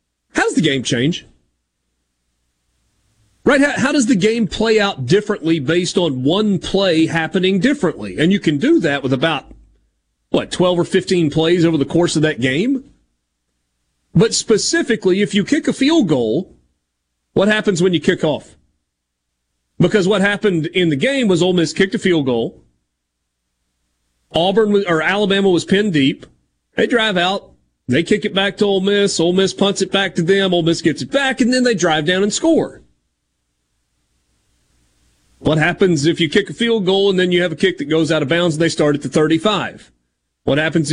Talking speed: 190 wpm